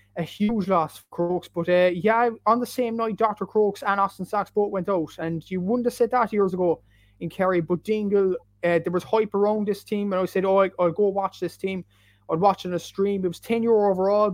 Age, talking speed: 20-39, 250 wpm